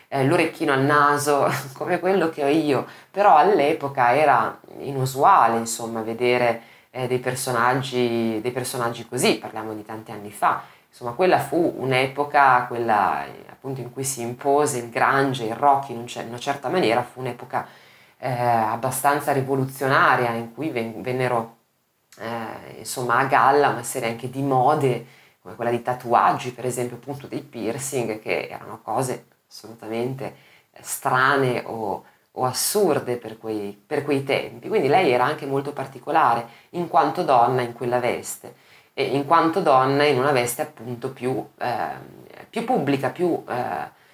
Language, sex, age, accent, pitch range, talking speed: Italian, female, 20-39, native, 115-140 Hz, 155 wpm